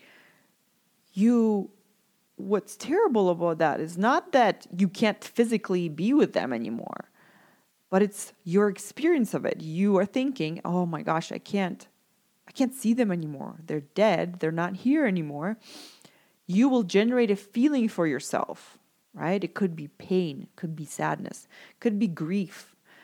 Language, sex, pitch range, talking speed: English, female, 175-230 Hz, 150 wpm